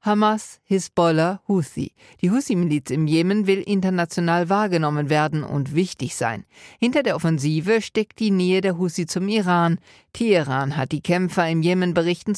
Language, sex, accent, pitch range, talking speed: German, female, German, 150-195 Hz, 150 wpm